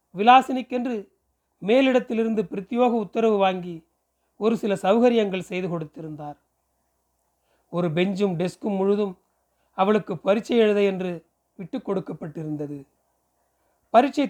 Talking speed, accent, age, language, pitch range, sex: 90 wpm, native, 30-49, Tamil, 175-230 Hz, male